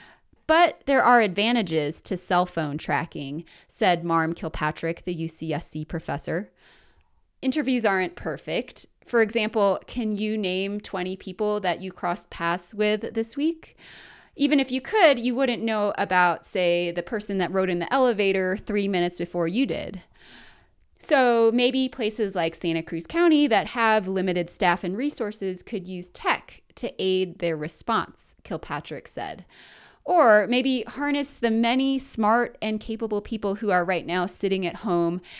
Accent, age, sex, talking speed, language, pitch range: American, 20-39, female, 155 wpm, English, 175-230 Hz